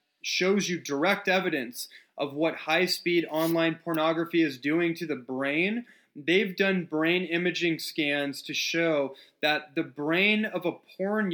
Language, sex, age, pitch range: English, male, 20-39, 150-185 Hz